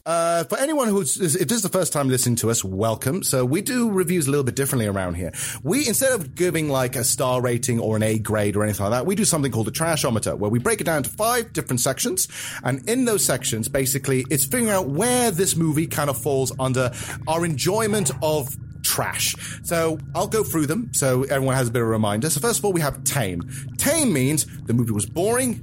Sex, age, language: male, 30-49, English